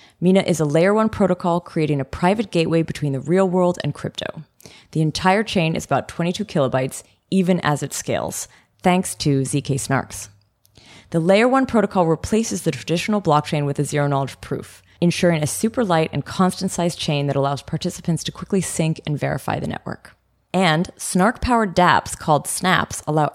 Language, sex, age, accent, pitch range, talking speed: English, female, 20-39, American, 150-200 Hz, 165 wpm